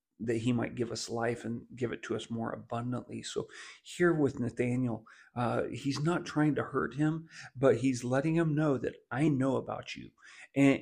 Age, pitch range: 40-59, 115-140 Hz